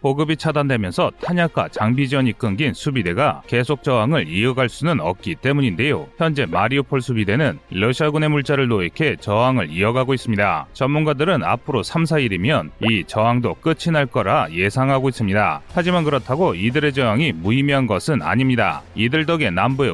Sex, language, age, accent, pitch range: male, Korean, 30-49, native, 120-155 Hz